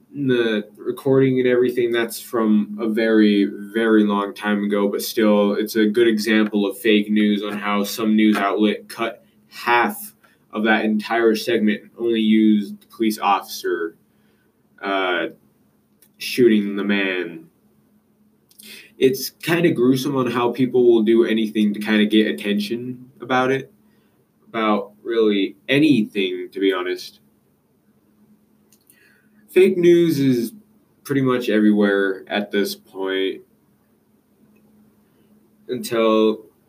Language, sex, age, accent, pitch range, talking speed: English, male, 20-39, American, 105-140 Hz, 125 wpm